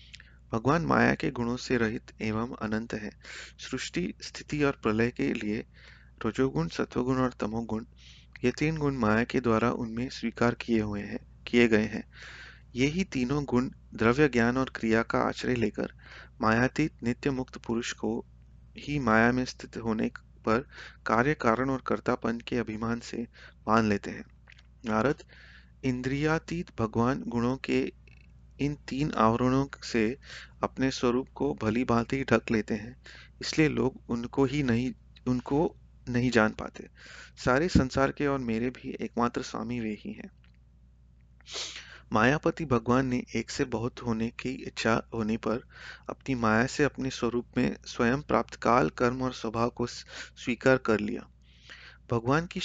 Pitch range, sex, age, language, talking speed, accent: 110-130 Hz, male, 30-49, Hindi, 140 wpm, native